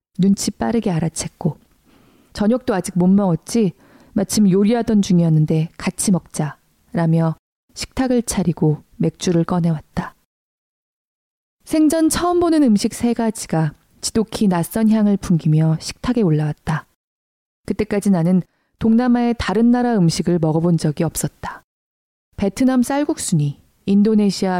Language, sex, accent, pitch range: Korean, female, native, 170-230 Hz